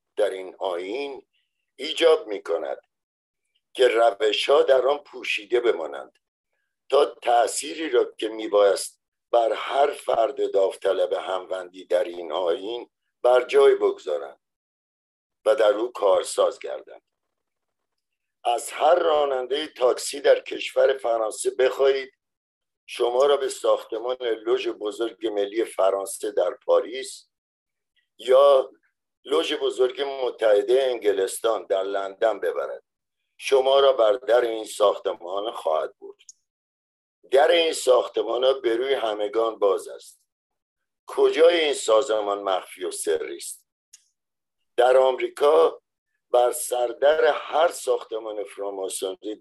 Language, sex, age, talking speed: Persian, male, 50-69, 110 wpm